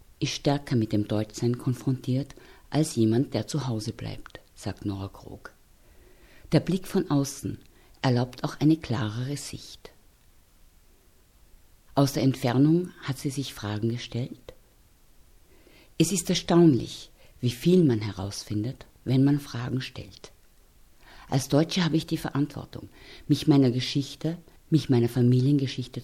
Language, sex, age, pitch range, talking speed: German, female, 50-69, 115-155 Hz, 125 wpm